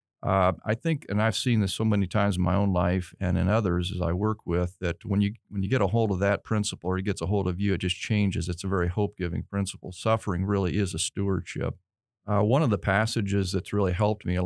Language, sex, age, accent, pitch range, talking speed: English, male, 40-59, American, 95-110 Hz, 260 wpm